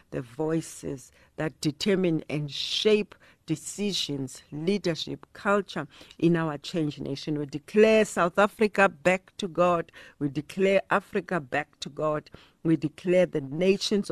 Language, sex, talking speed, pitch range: Italian, female, 130 wpm, 145-190 Hz